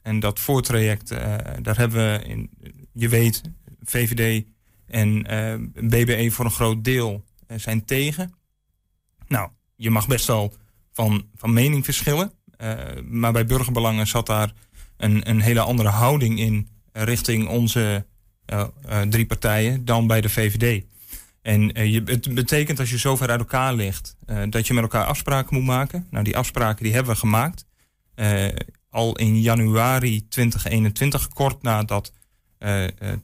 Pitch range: 105-125 Hz